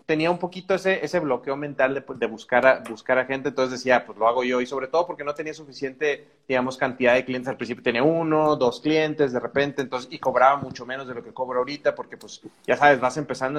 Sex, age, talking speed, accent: male, 30-49, 245 wpm, Mexican